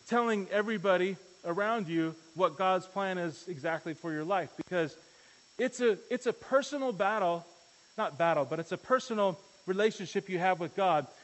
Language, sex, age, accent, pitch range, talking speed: English, male, 30-49, American, 180-235 Hz, 160 wpm